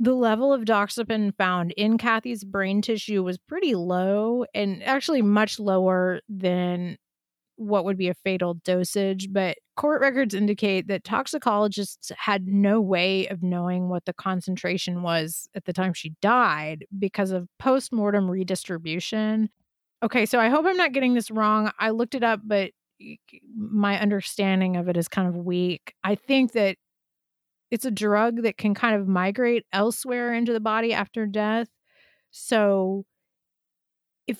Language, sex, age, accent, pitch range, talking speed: English, female, 30-49, American, 185-225 Hz, 155 wpm